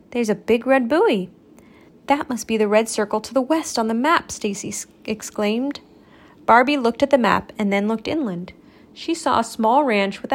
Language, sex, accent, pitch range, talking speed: English, female, American, 210-285 Hz, 195 wpm